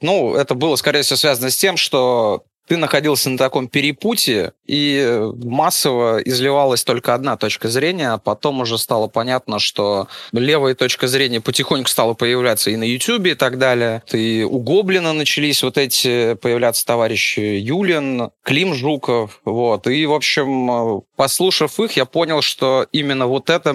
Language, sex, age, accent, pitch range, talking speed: Russian, male, 20-39, native, 110-135 Hz, 155 wpm